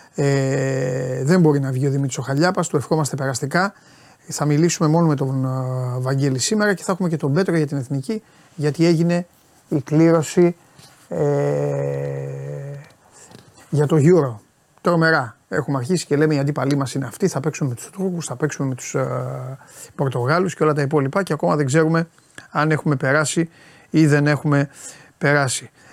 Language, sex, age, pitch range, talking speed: Greek, male, 30-49, 130-160 Hz, 165 wpm